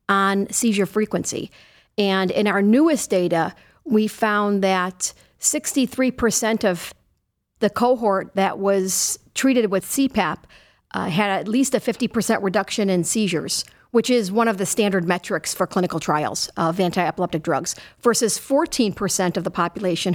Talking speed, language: 145 wpm, English